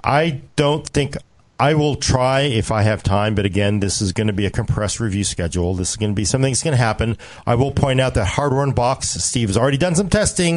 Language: English